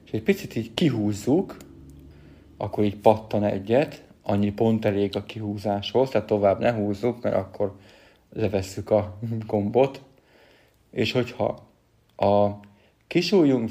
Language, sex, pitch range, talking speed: Hungarian, male, 105-120 Hz, 120 wpm